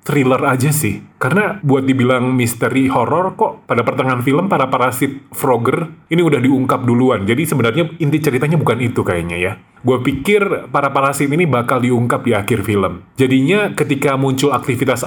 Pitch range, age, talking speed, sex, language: 120-150 Hz, 30-49, 165 wpm, male, Indonesian